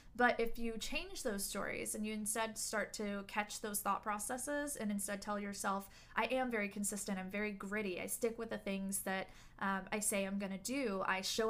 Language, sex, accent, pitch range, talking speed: English, female, American, 195-230 Hz, 215 wpm